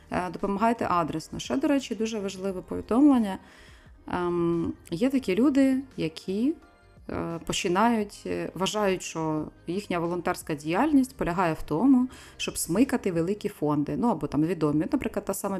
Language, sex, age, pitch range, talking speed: Ukrainian, female, 20-39, 170-240 Hz, 125 wpm